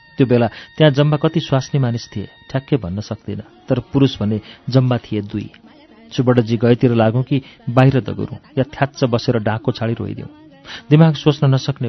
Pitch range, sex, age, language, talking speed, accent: 110-140 Hz, male, 40-59, English, 165 wpm, Indian